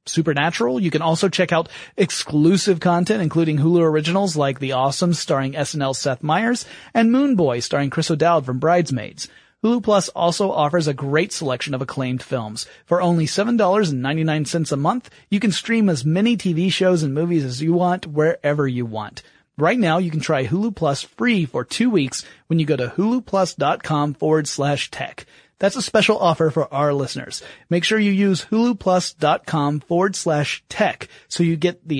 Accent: American